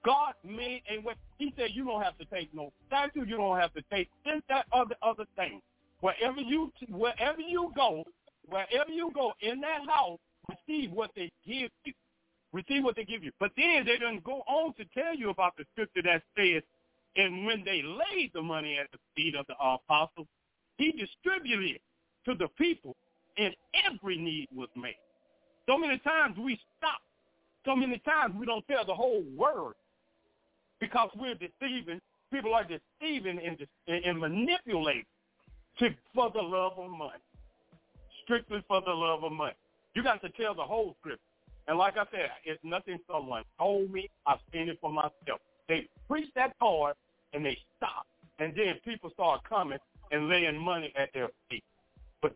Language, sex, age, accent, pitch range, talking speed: English, male, 50-69, American, 165-260 Hz, 180 wpm